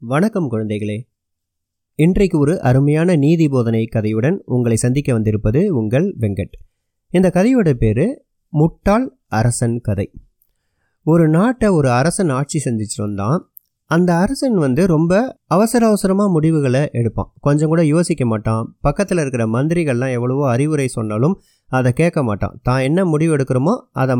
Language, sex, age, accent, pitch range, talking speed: Tamil, male, 30-49, native, 120-175 Hz, 125 wpm